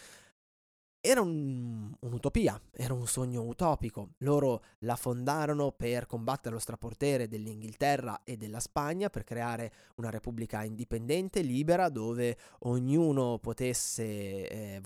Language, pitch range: Italian, 110-135 Hz